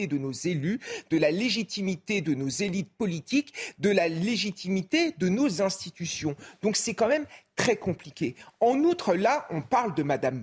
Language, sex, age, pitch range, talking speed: French, male, 40-59, 155-230 Hz, 165 wpm